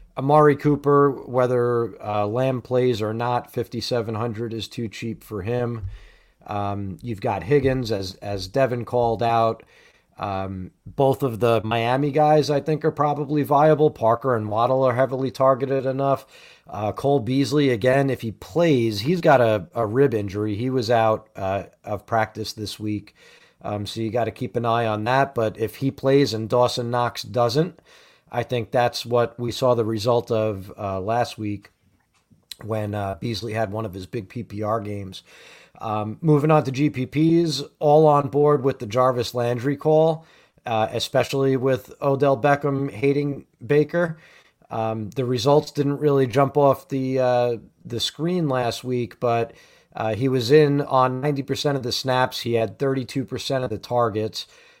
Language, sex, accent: English, male, American